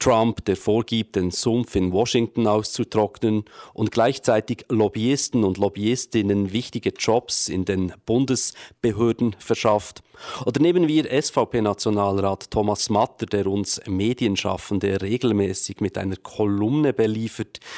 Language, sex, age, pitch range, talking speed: English, male, 40-59, 100-125 Hz, 110 wpm